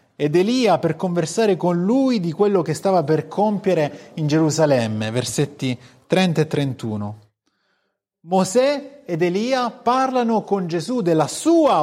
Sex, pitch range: male, 145-205 Hz